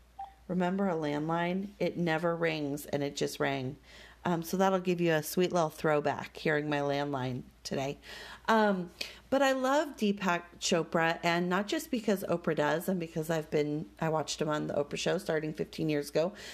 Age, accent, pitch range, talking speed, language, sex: 40-59, American, 160-215 Hz, 180 wpm, English, female